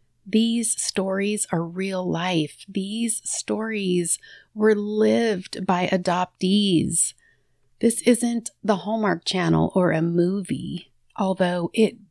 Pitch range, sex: 165-200 Hz, female